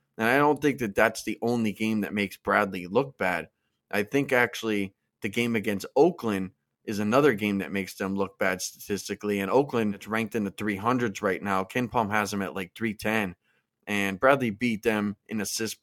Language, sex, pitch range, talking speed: English, male, 100-115 Hz, 205 wpm